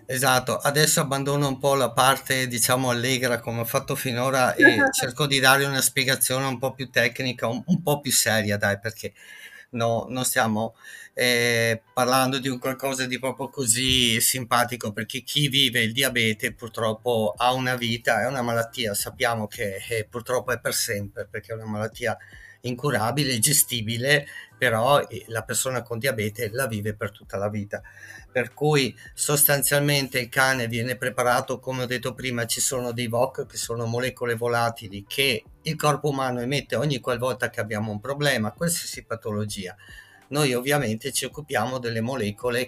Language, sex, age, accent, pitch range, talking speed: Italian, male, 50-69, native, 115-135 Hz, 160 wpm